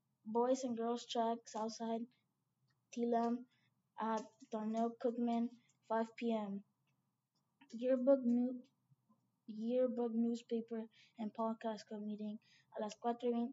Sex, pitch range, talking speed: female, 225-245 Hz, 100 wpm